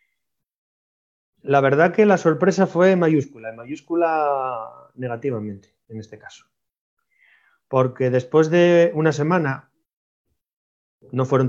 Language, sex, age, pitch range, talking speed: Spanish, male, 30-49, 125-180 Hz, 105 wpm